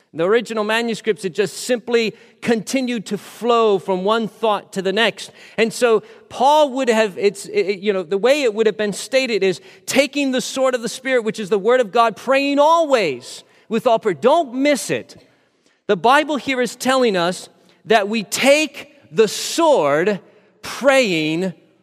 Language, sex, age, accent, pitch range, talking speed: English, male, 40-59, American, 190-250 Hz, 175 wpm